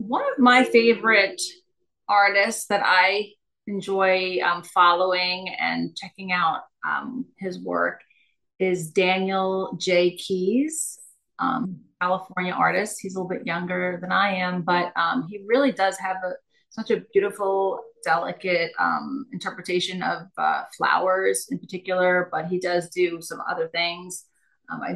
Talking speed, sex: 135 wpm, female